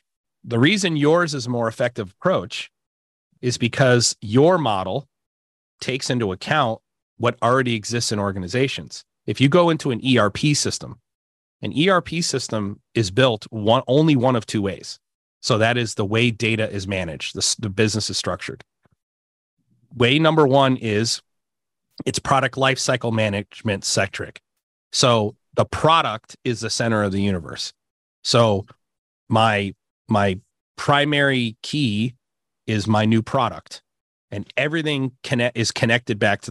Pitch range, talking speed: 100-130 Hz, 140 wpm